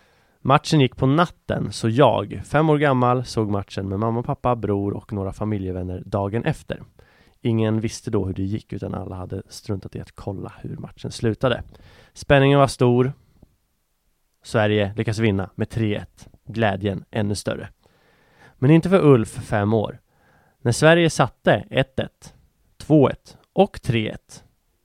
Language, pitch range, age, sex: English, 100-130 Hz, 30-49, male